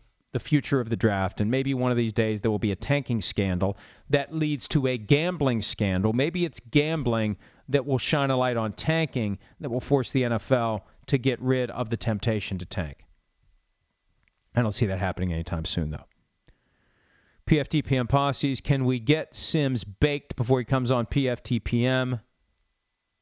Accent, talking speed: American, 170 wpm